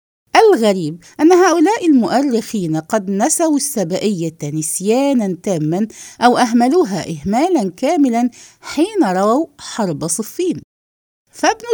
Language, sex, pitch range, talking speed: English, female, 195-305 Hz, 90 wpm